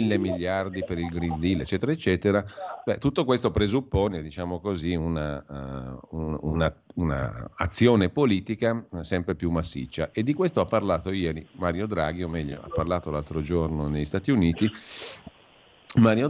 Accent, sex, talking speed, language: native, male, 150 wpm, Italian